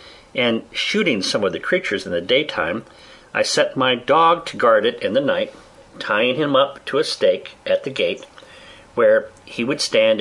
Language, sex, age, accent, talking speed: English, male, 50-69, American, 190 wpm